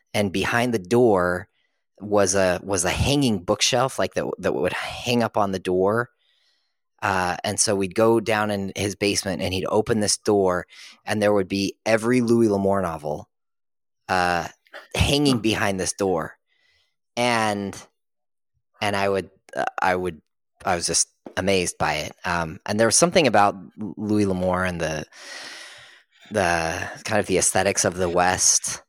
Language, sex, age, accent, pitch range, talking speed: English, male, 20-39, American, 90-110 Hz, 160 wpm